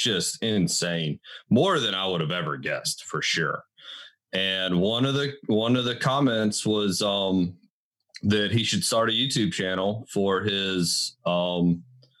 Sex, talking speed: male, 150 wpm